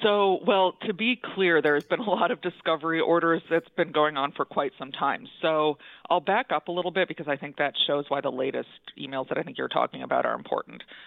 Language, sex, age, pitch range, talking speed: English, female, 30-49, 140-175 Hz, 240 wpm